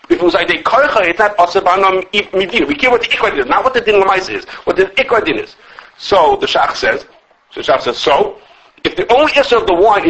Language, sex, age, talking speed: English, male, 50-69, 230 wpm